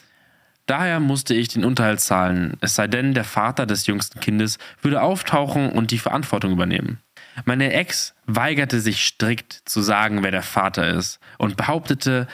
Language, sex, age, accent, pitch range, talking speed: German, male, 20-39, German, 100-125 Hz, 160 wpm